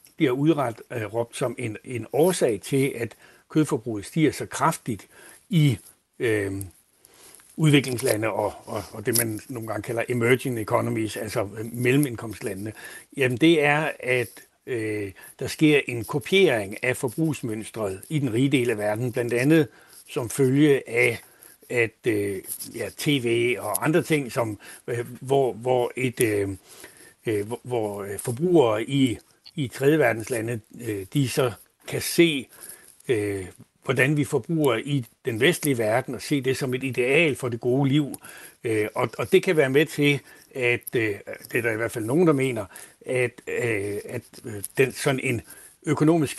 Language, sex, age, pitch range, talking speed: Danish, male, 60-79, 115-145 Hz, 145 wpm